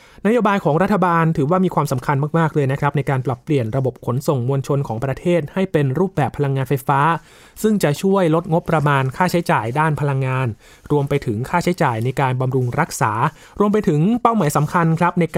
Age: 20-39